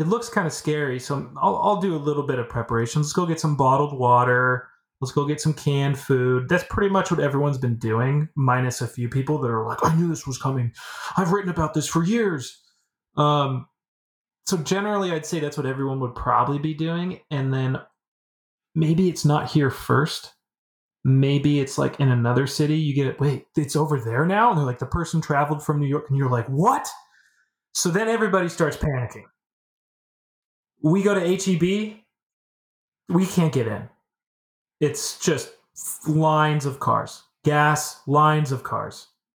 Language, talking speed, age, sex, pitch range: English, 180 wpm, 20-39, male, 125-160 Hz